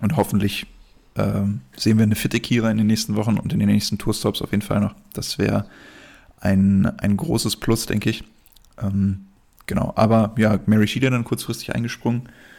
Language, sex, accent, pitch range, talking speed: German, male, German, 100-115 Hz, 180 wpm